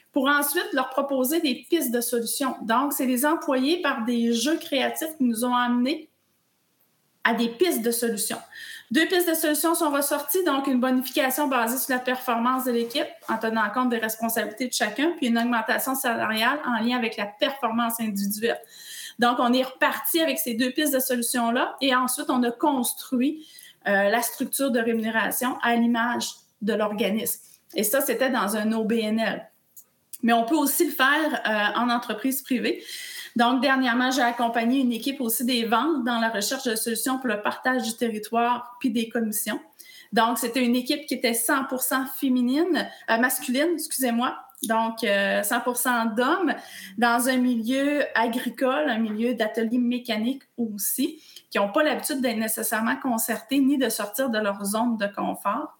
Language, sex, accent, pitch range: French, female, Canadian, 230-275 Hz